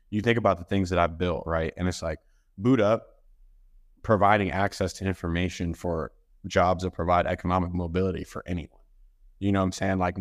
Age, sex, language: 20-39, male, English